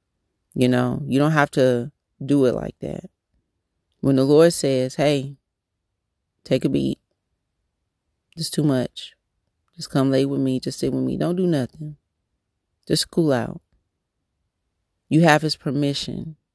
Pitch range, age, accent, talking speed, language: 115-145 Hz, 30-49, American, 145 wpm, English